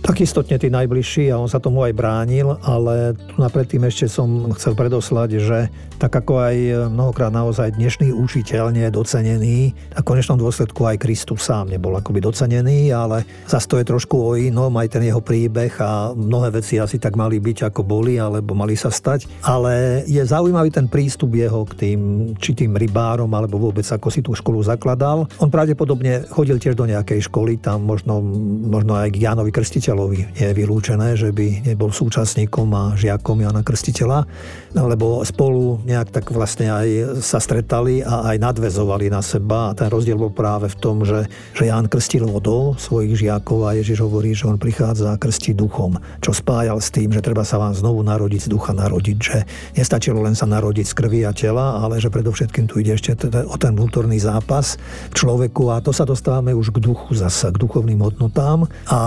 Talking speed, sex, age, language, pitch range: 185 wpm, male, 50-69, Slovak, 110-125 Hz